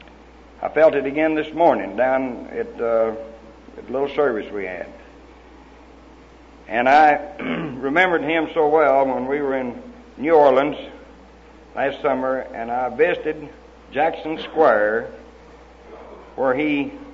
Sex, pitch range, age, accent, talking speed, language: male, 120-155 Hz, 60-79, American, 125 wpm, English